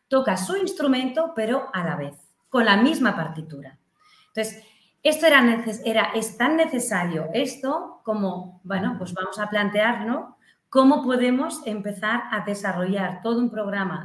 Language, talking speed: Spanish, 140 wpm